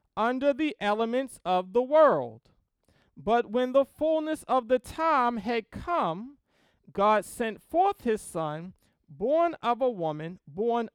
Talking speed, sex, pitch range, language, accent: 135 wpm, male, 170-250 Hz, English, American